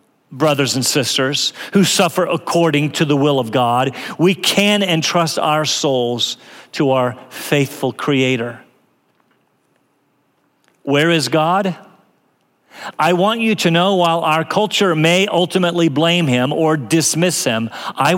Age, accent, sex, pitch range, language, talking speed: 40-59, American, male, 140-185 Hz, French, 130 wpm